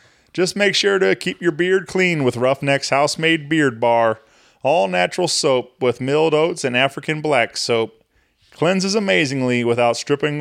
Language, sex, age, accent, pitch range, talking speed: English, male, 30-49, American, 120-150 Hz, 150 wpm